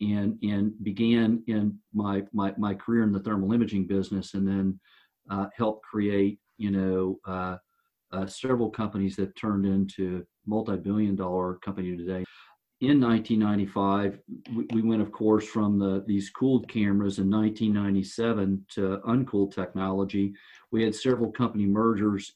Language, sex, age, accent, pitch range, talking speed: English, male, 50-69, American, 95-110 Hz, 140 wpm